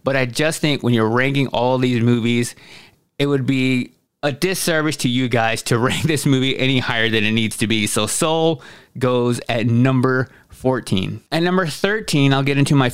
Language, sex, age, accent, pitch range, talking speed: English, male, 20-39, American, 120-145 Hz, 195 wpm